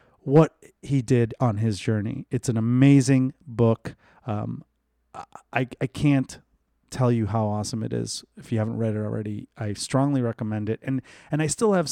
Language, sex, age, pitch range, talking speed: English, male, 30-49, 110-130 Hz, 175 wpm